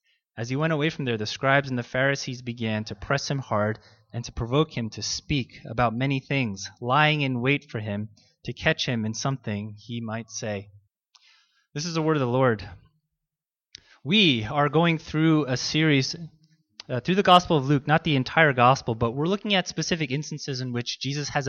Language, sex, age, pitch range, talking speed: English, male, 20-39, 125-155 Hz, 200 wpm